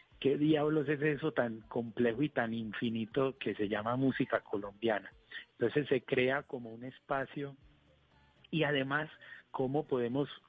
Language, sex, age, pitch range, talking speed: Spanish, male, 40-59, 105-135 Hz, 135 wpm